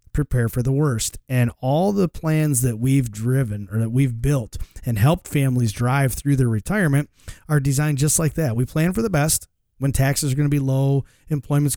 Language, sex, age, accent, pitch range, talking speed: English, male, 30-49, American, 120-150 Hz, 205 wpm